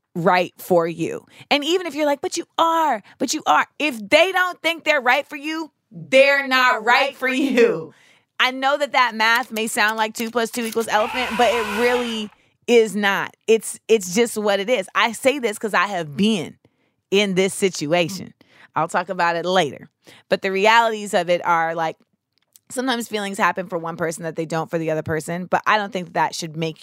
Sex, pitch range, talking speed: female, 175-235 Hz, 210 wpm